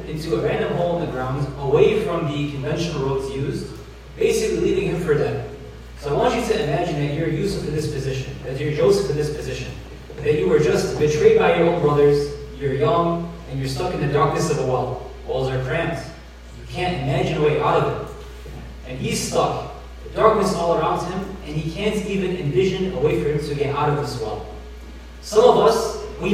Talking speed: 215 wpm